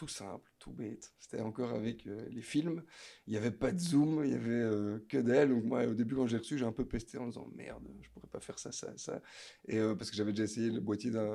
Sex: male